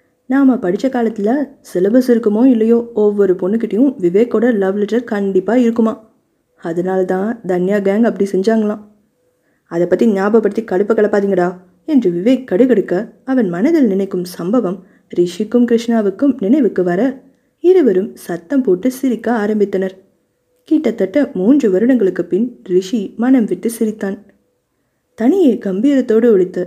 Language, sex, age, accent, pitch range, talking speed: Tamil, female, 20-39, native, 195-240 Hz, 110 wpm